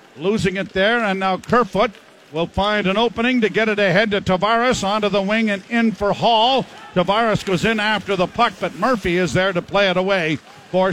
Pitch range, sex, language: 195-235 Hz, male, English